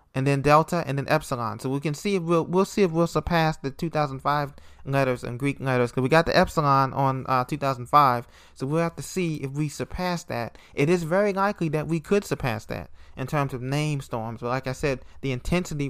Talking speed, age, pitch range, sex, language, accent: 225 wpm, 20-39, 135-160 Hz, male, English, American